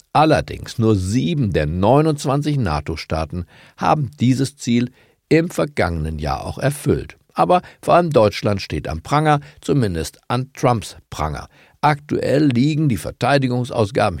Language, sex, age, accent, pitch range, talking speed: German, male, 50-69, German, 95-145 Hz, 125 wpm